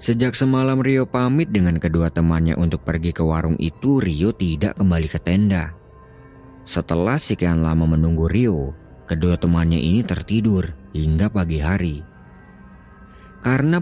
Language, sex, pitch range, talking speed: Indonesian, male, 80-115 Hz, 130 wpm